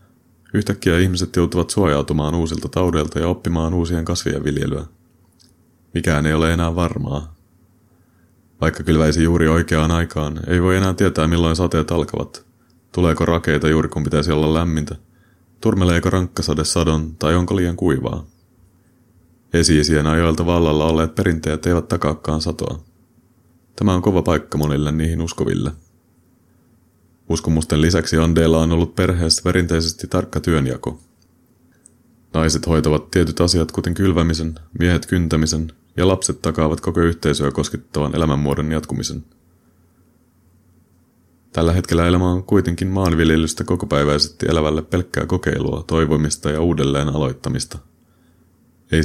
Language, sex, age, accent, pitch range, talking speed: Finnish, male, 30-49, native, 80-90 Hz, 120 wpm